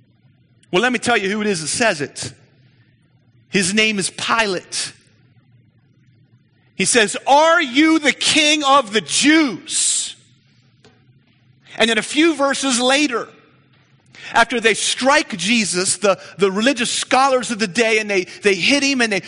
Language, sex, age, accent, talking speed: English, male, 40-59, American, 150 wpm